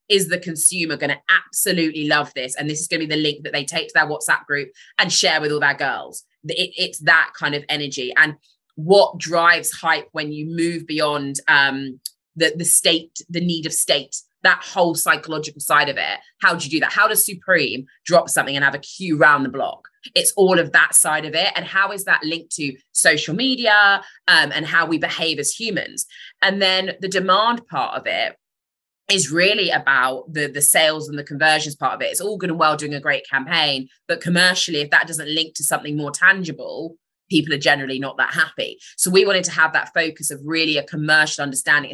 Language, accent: English, British